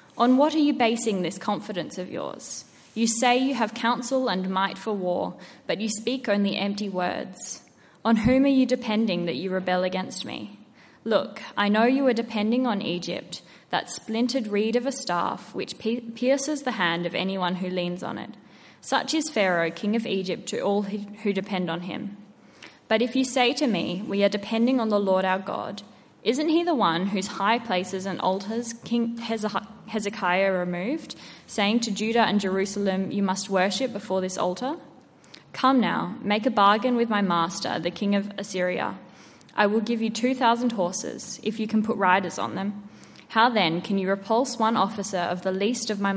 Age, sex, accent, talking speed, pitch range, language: 10-29, female, Australian, 185 wpm, 190-235 Hz, English